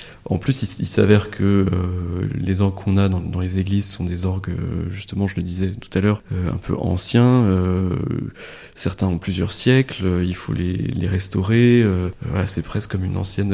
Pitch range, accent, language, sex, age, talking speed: 95-115 Hz, French, French, male, 20-39, 200 wpm